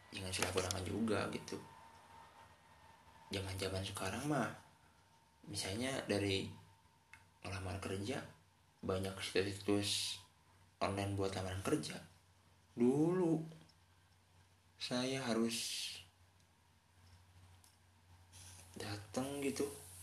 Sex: male